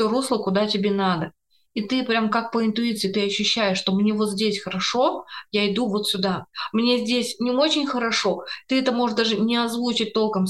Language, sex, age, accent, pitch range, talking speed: Russian, female, 20-39, native, 195-235 Hz, 190 wpm